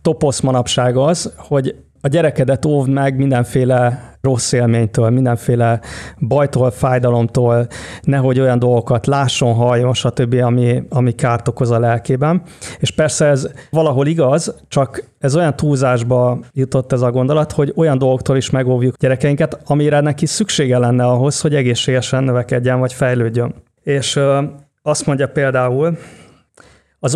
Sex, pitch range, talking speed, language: male, 125-150 Hz, 135 wpm, Hungarian